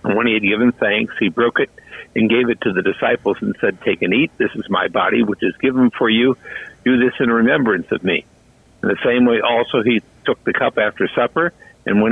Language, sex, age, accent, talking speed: English, male, 50-69, American, 240 wpm